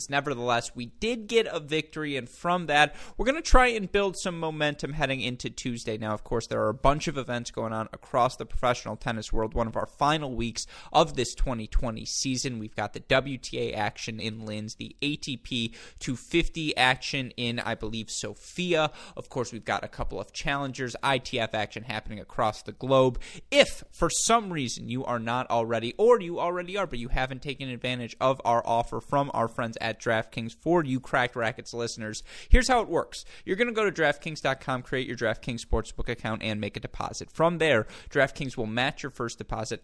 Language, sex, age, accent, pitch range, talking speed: English, male, 20-39, American, 115-145 Hz, 200 wpm